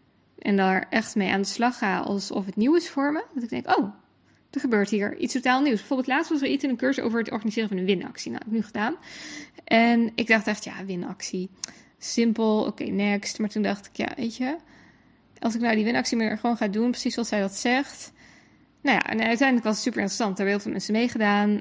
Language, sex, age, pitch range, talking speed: English, female, 10-29, 205-255 Hz, 245 wpm